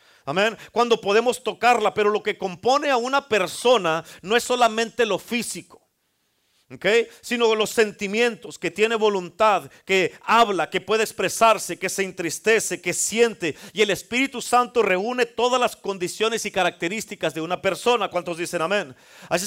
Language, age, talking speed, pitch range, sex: Spanish, 40-59, 155 wpm, 195-245 Hz, male